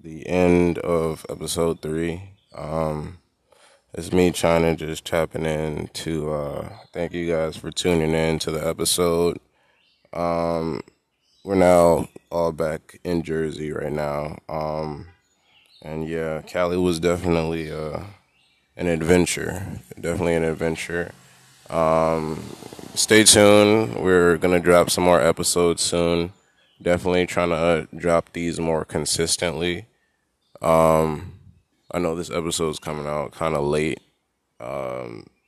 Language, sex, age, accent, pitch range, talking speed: English, male, 20-39, American, 80-90 Hz, 125 wpm